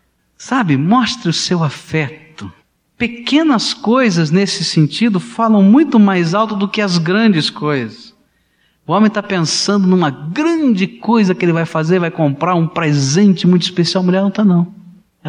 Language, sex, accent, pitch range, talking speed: Portuguese, male, Brazilian, 135-205 Hz, 160 wpm